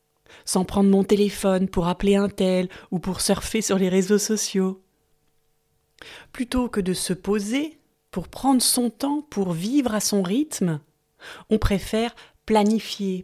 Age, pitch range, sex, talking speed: 30-49, 190-230 Hz, female, 145 wpm